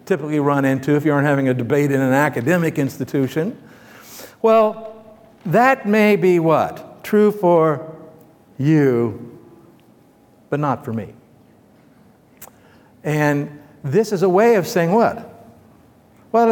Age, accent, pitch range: 60-79, American, 140-190 Hz